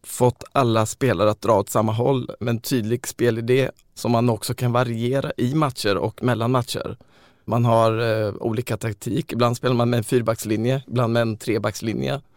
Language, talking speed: Swedish, 180 wpm